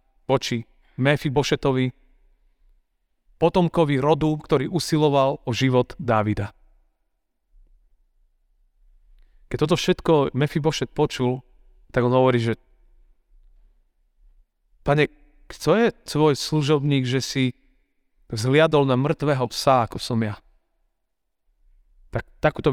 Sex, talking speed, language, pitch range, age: male, 100 wpm, Slovak, 125-165 Hz, 40-59